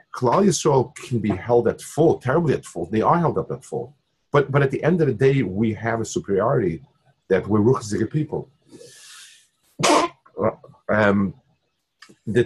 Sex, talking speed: male, 165 wpm